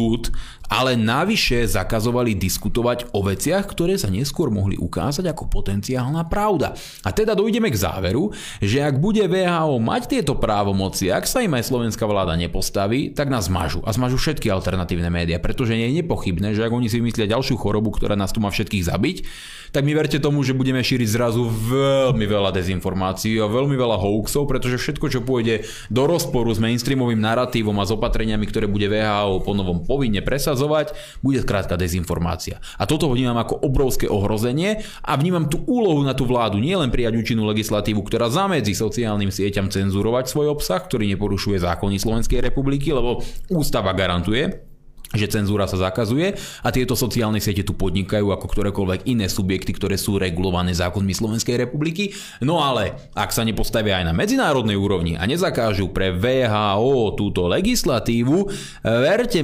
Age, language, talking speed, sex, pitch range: 20-39, Slovak, 165 wpm, male, 100-130 Hz